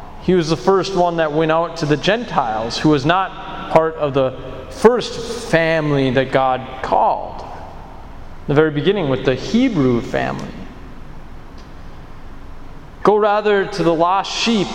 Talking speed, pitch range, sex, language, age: 145 wpm, 140-180 Hz, male, English, 30-49